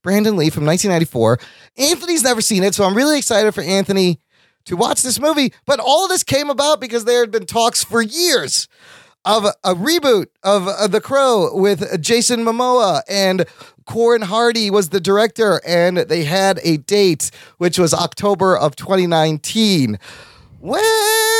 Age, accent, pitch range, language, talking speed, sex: 30-49, American, 185-260 Hz, English, 160 wpm, male